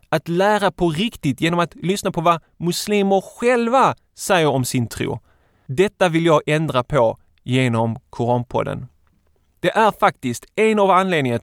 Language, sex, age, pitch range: Swedish, male, 30-49, 125-185 Hz